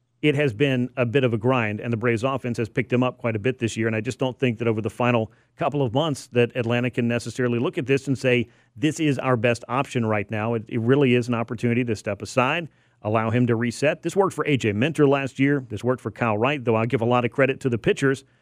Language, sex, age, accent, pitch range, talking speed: English, male, 40-59, American, 120-140 Hz, 275 wpm